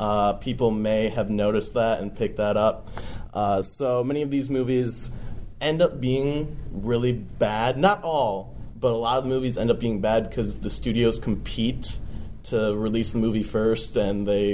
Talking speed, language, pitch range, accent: 180 wpm, English, 105-120 Hz, American